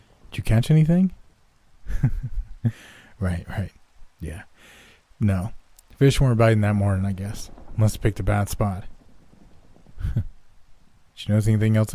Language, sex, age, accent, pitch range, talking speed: English, male, 30-49, American, 90-115 Hz, 130 wpm